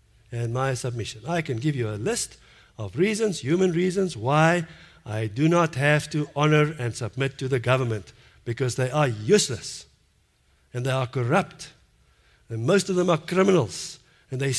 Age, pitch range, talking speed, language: 60-79, 110-140 Hz, 170 wpm, English